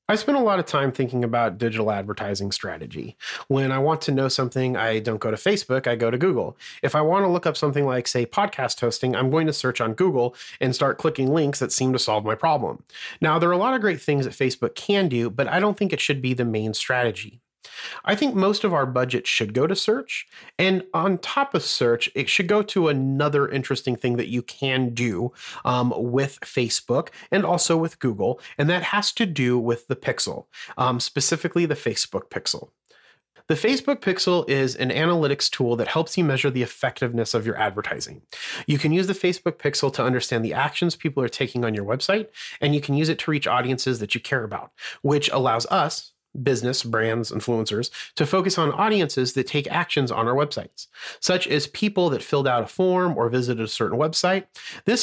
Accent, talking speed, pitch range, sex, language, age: American, 215 wpm, 120-170 Hz, male, English, 30-49